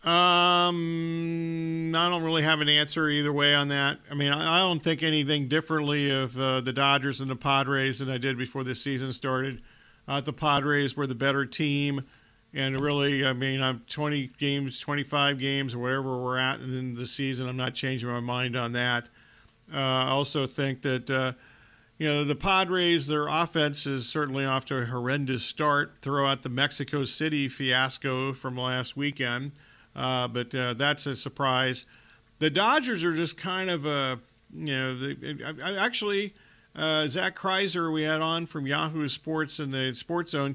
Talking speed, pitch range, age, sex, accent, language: 180 wpm, 130-155 Hz, 50-69, male, American, English